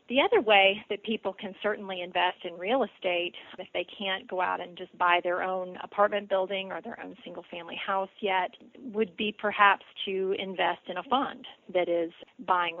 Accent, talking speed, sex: American, 185 wpm, female